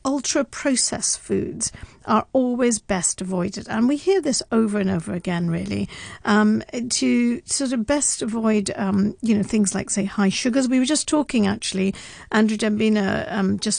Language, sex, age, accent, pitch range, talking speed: English, female, 50-69, British, 195-230 Hz, 170 wpm